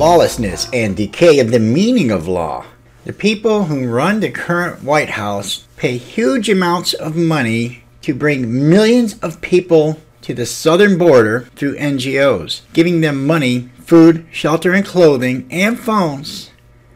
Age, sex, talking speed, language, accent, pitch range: 60-79, male, 145 wpm, English, American, 125-175 Hz